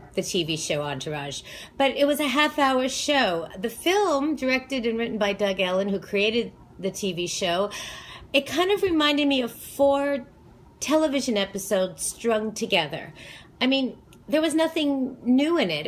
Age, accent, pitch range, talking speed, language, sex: 40-59, American, 190-255 Hz, 165 wpm, English, female